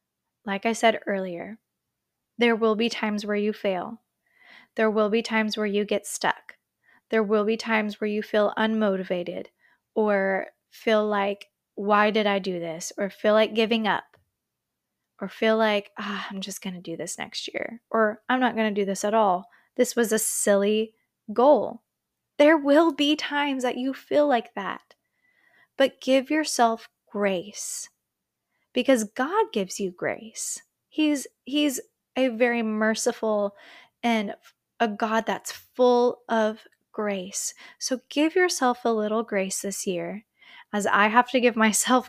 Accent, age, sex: American, 20-39, female